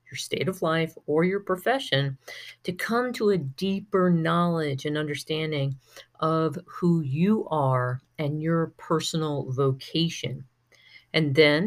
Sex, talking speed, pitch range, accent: female, 130 wpm, 135-170 Hz, American